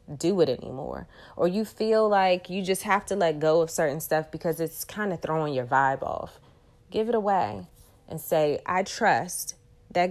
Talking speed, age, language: 190 wpm, 30-49, English